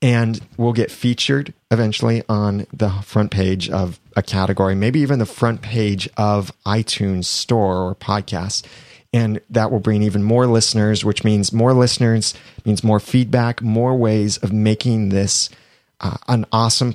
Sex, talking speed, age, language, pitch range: male, 155 wpm, 30-49, English, 100-120 Hz